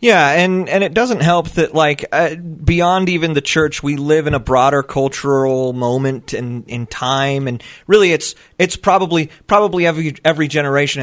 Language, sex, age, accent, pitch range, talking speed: English, male, 30-49, American, 135-165 Hz, 175 wpm